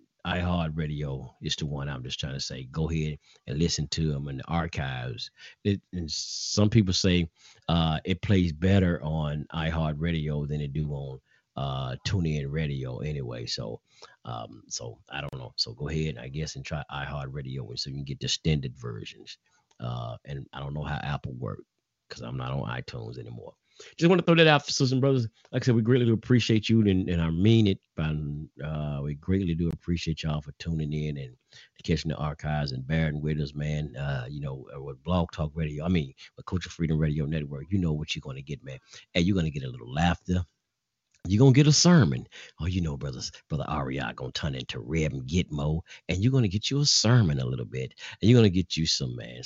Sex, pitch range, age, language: male, 75-95 Hz, 40-59, English